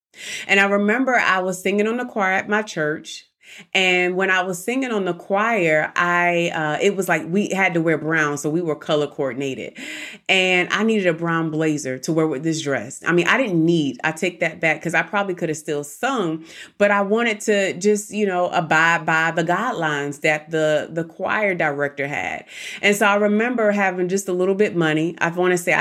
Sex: female